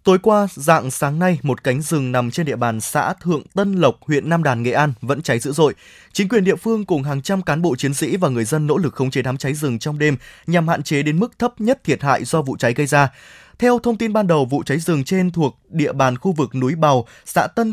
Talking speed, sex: 270 wpm, male